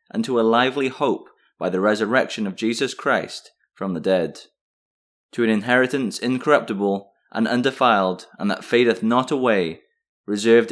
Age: 20-39